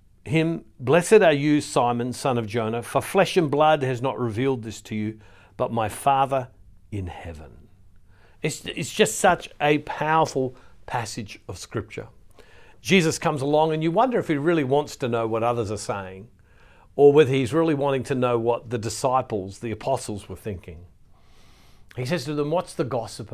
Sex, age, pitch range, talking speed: male, 60-79, 105-155 Hz, 175 wpm